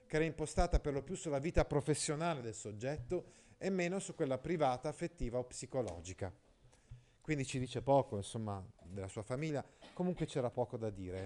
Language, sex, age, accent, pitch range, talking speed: Italian, male, 30-49, native, 115-155 Hz, 170 wpm